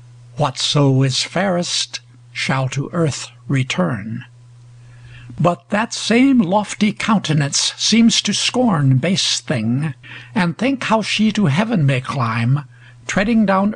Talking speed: 120 wpm